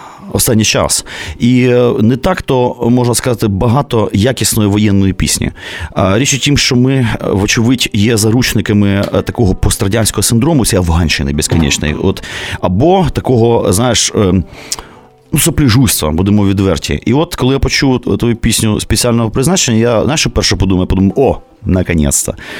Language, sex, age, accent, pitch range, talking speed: Ukrainian, male, 30-49, native, 100-130 Hz, 135 wpm